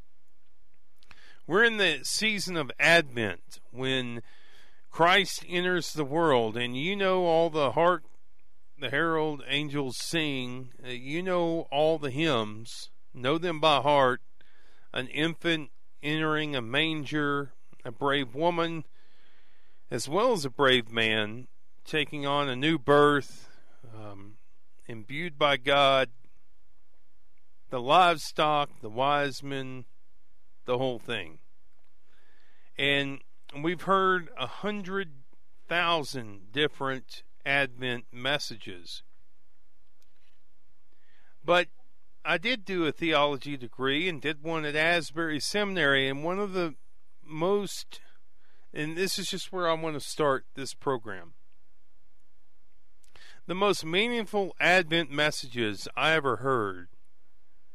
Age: 40-59